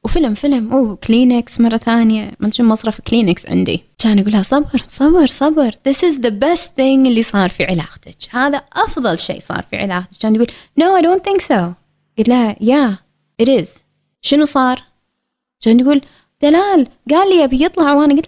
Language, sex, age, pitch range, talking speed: Arabic, female, 20-39, 210-290 Hz, 165 wpm